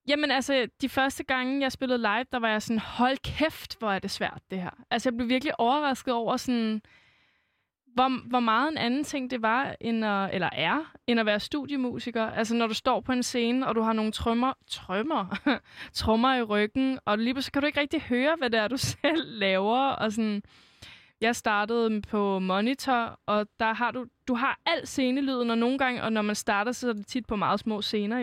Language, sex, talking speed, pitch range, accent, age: Danish, female, 215 wpm, 205-255 Hz, native, 20-39